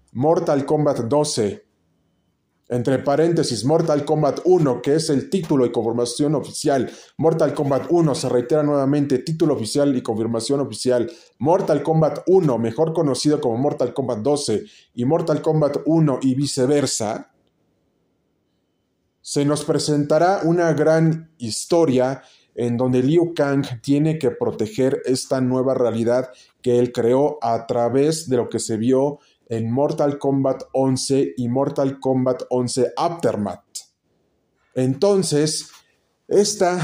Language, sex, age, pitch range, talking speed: Spanish, male, 30-49, 125-160 Hz, 125 wpm